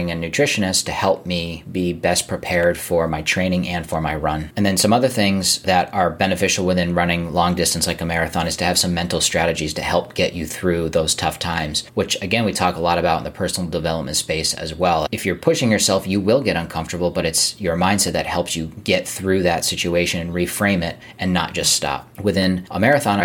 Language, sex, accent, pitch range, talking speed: English, male, American, 85-95 Hz, 225 wpm